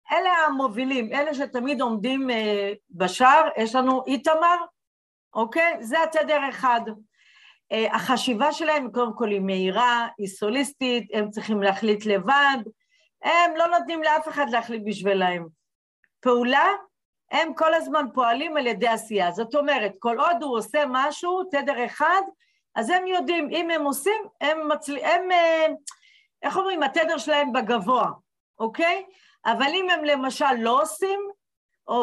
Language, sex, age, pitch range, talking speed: Hebrew, female, 50-69, 225-320 Hz, 135 wpm